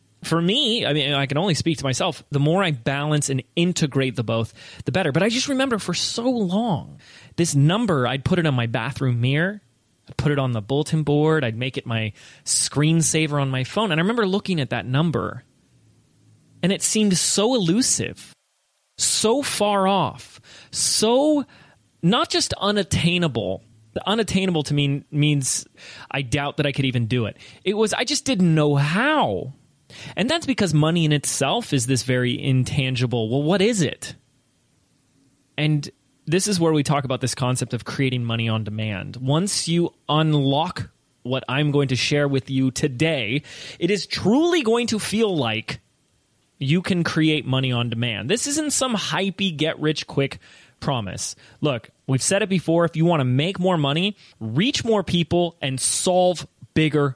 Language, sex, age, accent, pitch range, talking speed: English, male, 30-49, American, 130-180 Hz, 175 wpm